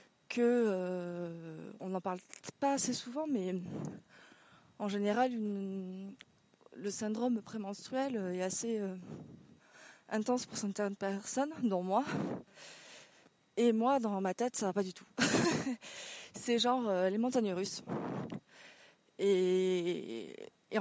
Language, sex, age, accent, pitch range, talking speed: French, female, 20-39, French, 195-245 Hz, 120 wpm